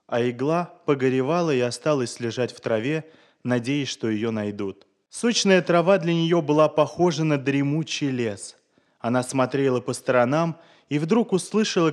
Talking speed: 140 wpm